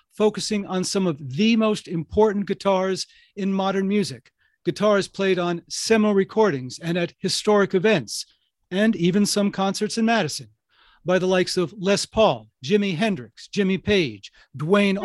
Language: English